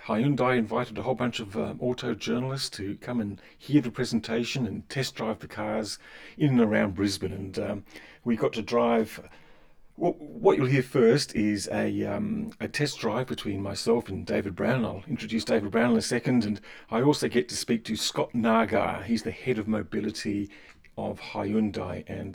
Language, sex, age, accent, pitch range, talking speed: English, male, 40-59, British, 75-120 Hz, 190 wpm